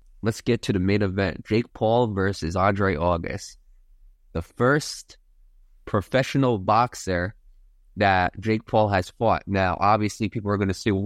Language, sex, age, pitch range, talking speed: English, male, 20-39, 90-105 Hz, 150 wpm